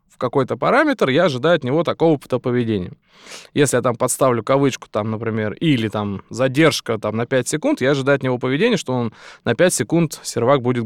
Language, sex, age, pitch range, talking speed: Russian, male, 20-39, 120-160 Hz, 195 wpm